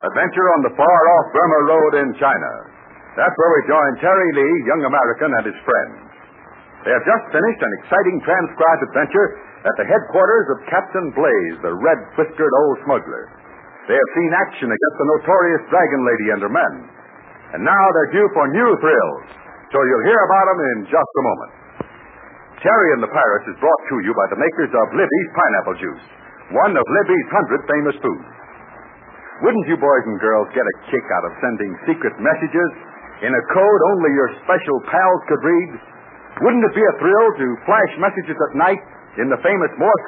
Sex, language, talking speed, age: male, English, 185 wpm, 60-79